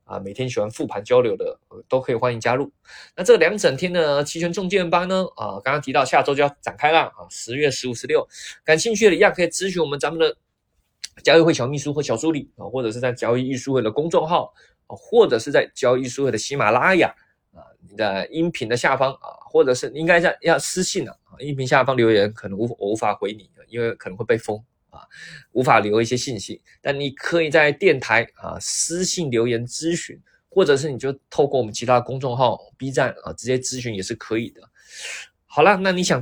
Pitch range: 115-170 Hz